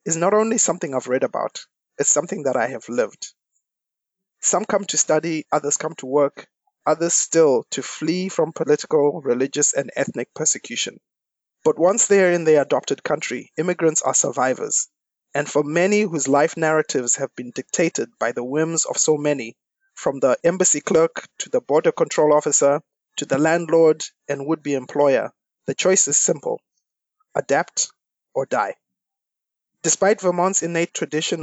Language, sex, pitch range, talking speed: English, male, 145-185 Hz, 160 wpm